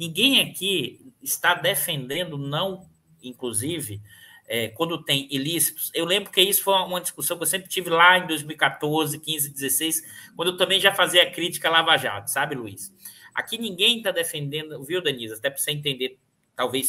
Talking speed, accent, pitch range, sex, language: 165 wpm, Brazilian, 145-215 Hz, male, Portuguese